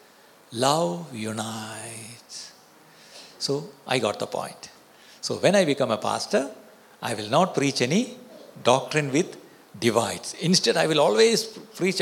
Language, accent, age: Malayalam, native, 60-79